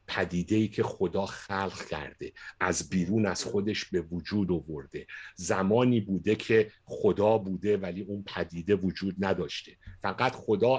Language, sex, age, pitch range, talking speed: Persian, male, 60-79, 95-135 Hz, 135 wpm